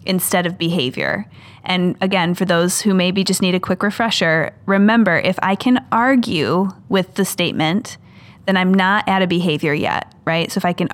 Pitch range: 175-205 Hz